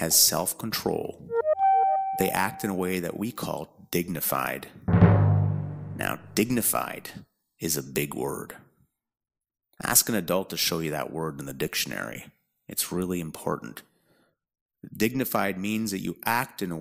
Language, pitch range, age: English, 90-115 Hz, 30-49